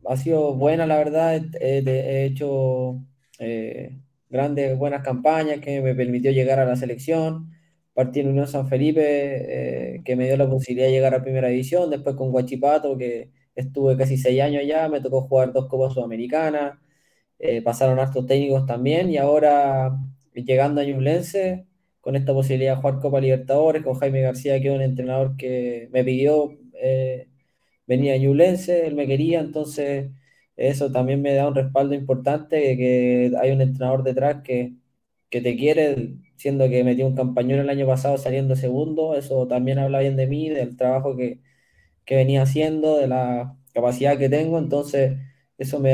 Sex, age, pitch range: male, 20-39, 130-145 Hz